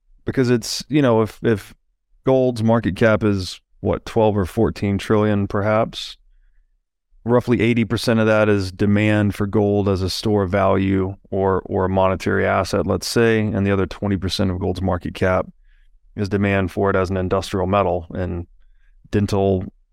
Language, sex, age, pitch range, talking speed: English, male, 30-49, 95-110 Hz, 165 wpm